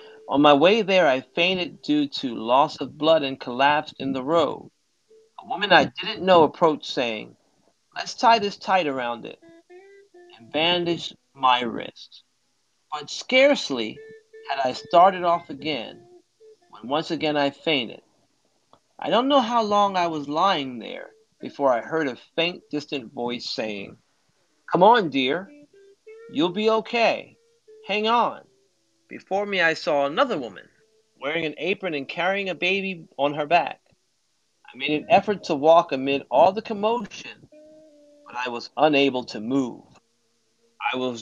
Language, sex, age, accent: Japanese, male, 40-59, American